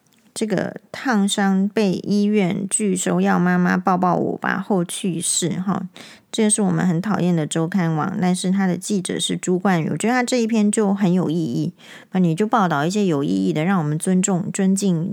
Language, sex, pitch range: Chinese, female, 180-225 Hz